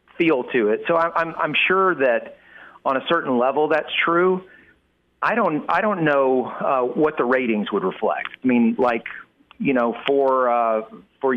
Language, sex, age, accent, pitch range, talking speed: English, male, 40-59, American, 115-140 Hz, 180 wpm